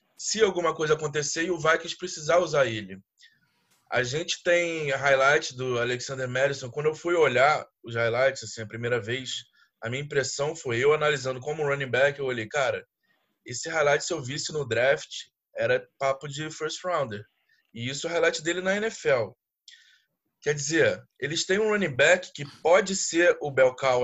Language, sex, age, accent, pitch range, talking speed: Portuguese, male, 20-39, Brazilian, 130-170 Hz, 180 wpm